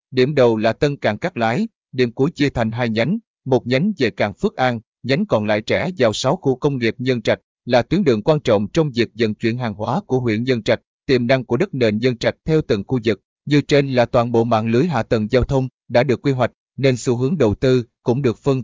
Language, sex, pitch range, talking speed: Vietnamese, male, 115-140 Hz, 255 wpm